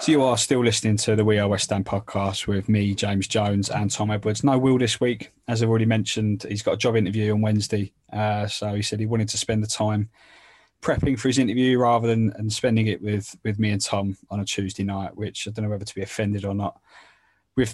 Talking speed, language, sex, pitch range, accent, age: 245 wpm, English, male, 100-115 Hz, British, 20-39